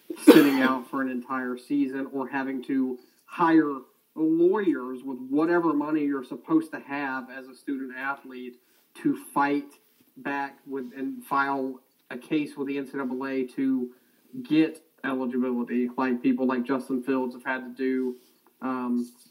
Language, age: English, 30-49